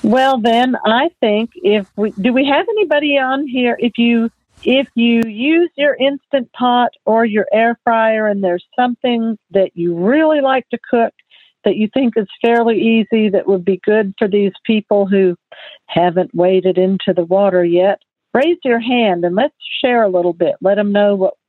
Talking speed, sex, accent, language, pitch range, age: 185 wpm, female, American, English, 195-240 Hz, 50-69